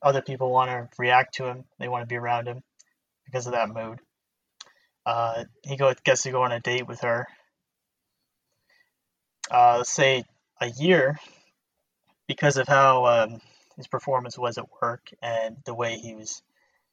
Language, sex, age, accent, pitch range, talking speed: English, male, 20-39, American, 120-130 Hz, 165 wpm